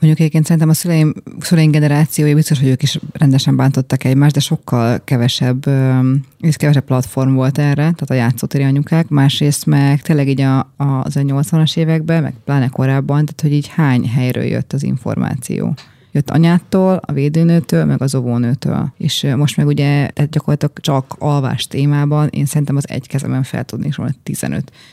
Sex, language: female, Hungarian